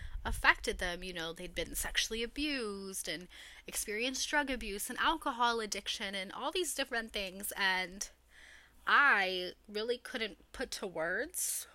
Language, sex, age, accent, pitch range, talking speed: English, female, 10-29, American, 185-230 Hz, 140 wpm